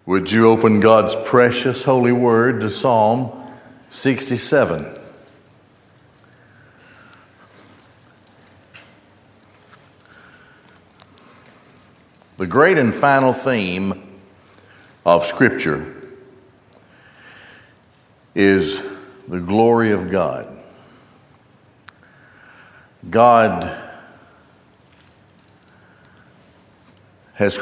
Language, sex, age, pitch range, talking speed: English, male, 60-79, 95-120 Hz, 50 wpm